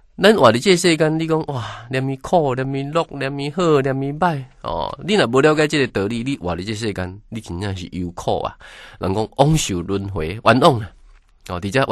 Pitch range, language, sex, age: 95-140 Hz, Chinese, male, 20-39